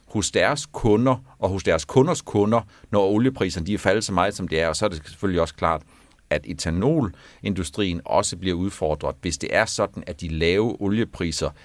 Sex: male